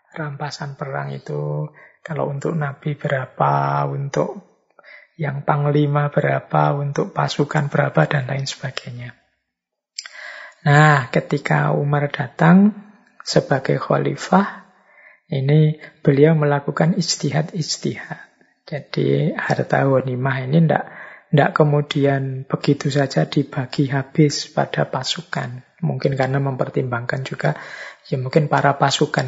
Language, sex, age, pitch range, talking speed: Indonesian, male, 20-39, 130-155 Hz, 95 wpm